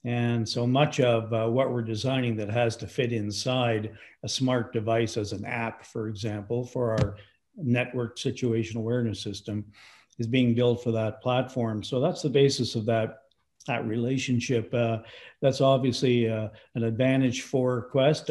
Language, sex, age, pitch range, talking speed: English, male, 50-69, 115-130 Hz, 160 wpm